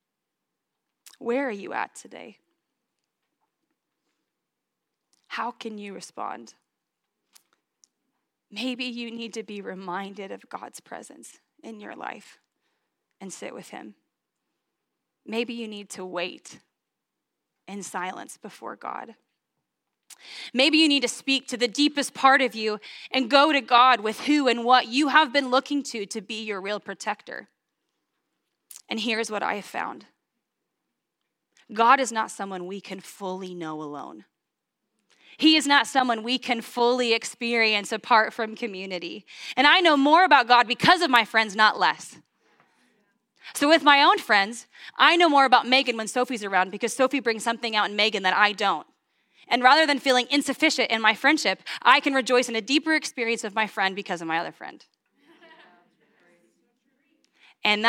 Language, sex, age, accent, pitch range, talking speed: English, female, 20-39, American, 210-270 Hz, 155 wpm